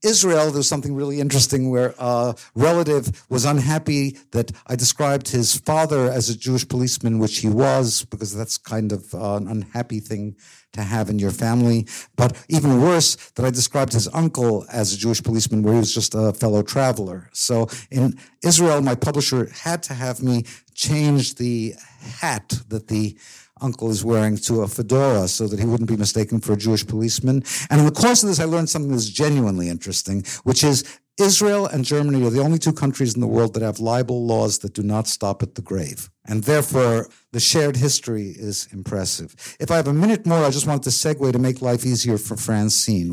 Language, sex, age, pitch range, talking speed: English, male, 60-79, 110-140 Hz, 200 wpm